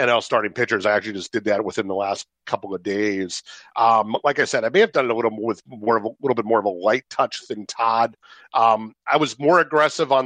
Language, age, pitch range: English, 40-59, 105-135 Hz